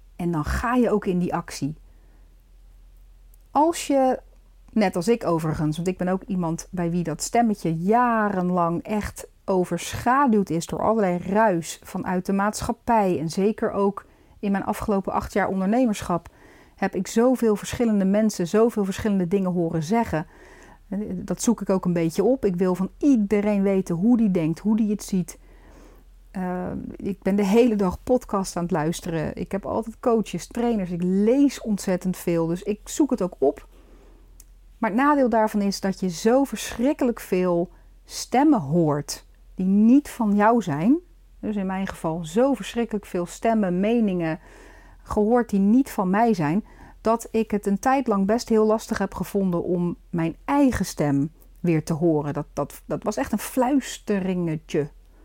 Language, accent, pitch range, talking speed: Dutch, Dutch, 175-225 Hz, 165 wpm